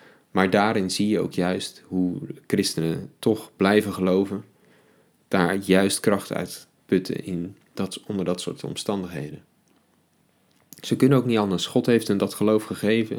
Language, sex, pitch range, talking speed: Dutch, male, 90-120 Hz, 140 wpm